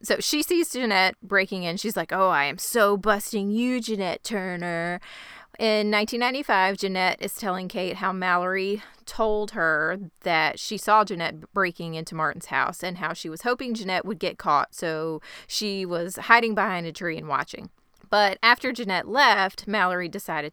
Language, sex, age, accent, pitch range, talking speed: English, female, 30-49, American, 180-220 Hz, 170 wpm